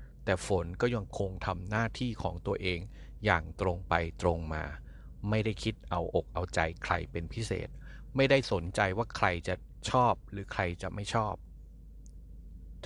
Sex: male